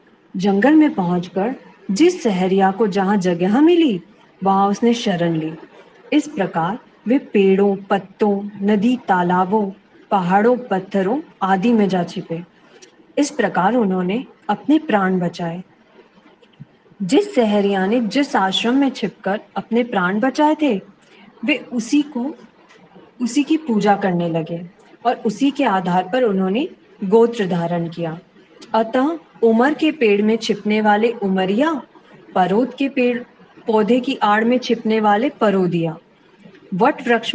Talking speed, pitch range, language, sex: 125 wpm, 190-245 Hz, Hindi, female